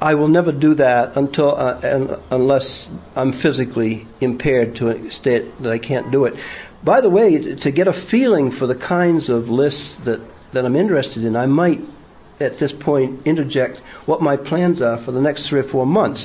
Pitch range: 120-150 Hz